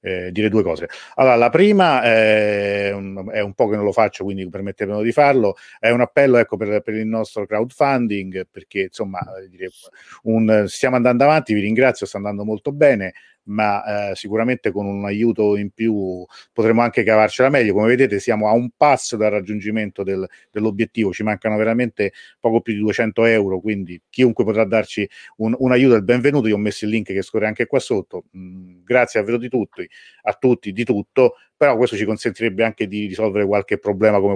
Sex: male